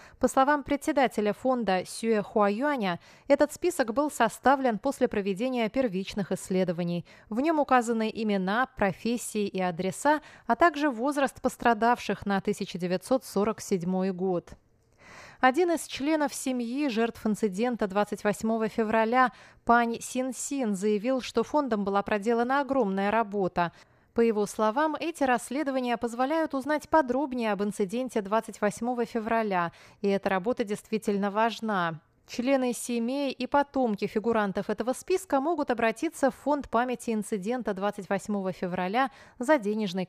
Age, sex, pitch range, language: 30-49, female, 200-255 Hz, Russian